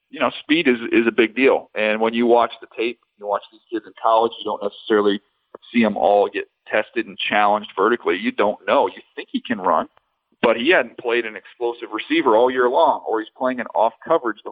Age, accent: 40-59, American